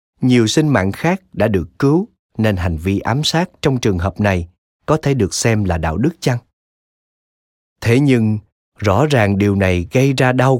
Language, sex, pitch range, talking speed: Vietnamese, male, 95-135 Hz, 185 wpm